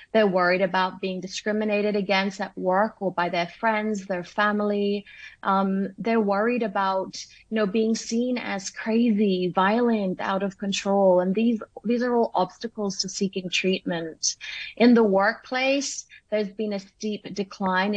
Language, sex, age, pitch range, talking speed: English, female, 30-49, 190-220 Hz, 150 wpm